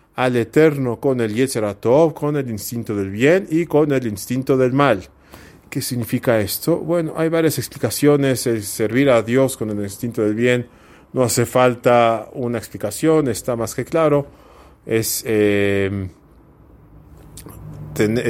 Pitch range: 110-140 Hz